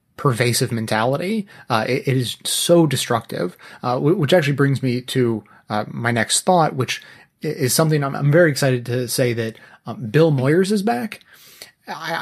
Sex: male